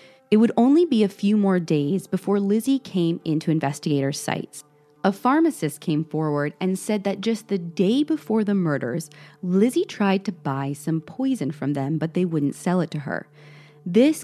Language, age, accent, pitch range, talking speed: English, 30-49, American, 155-210 Hz, 180 wpm